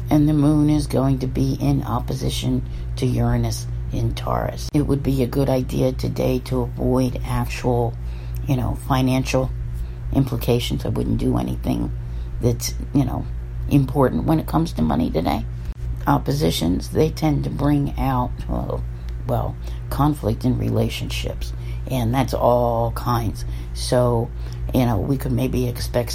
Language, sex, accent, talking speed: English, female, American, 140 wpm